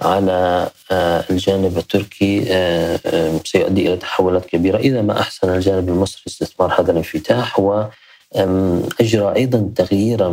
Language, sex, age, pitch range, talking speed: Arabic, male, 30-49, 90-105 Hz, 110 wpm